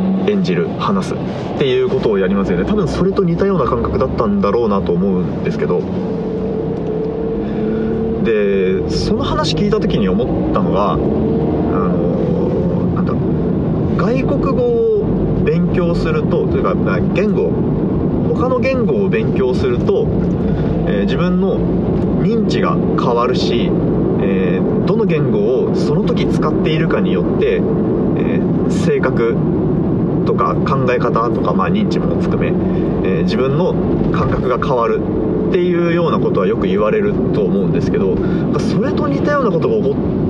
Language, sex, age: Japanese, male, 30-49